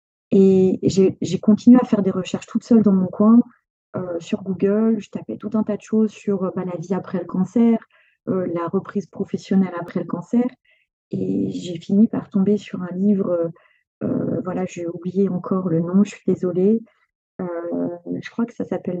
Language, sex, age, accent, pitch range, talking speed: French, female, 30-49, French, 185-220 Hz, 195 wpm